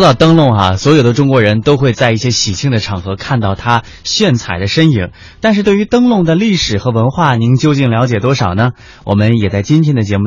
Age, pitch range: 20-39, 110-160 Hz